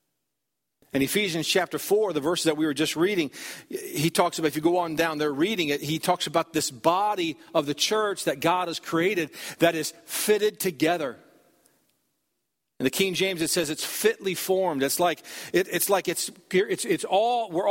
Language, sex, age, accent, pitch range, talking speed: English, male, 50-69, American, 165-215 Hz, 195 wpm